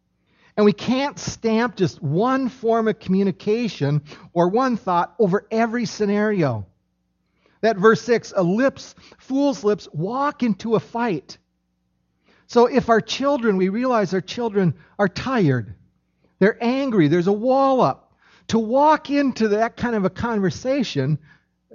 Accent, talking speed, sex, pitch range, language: American, 140 wpm, male, 150-230 Hz, English